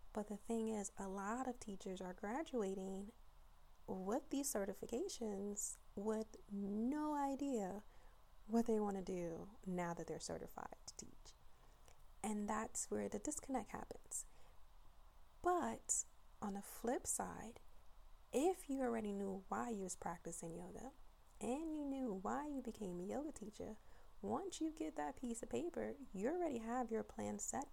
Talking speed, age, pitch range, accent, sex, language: 150 wpm, 30-49, 195-250 Hz, American, female, English